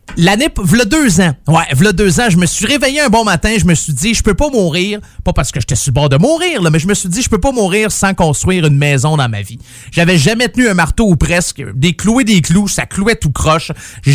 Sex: male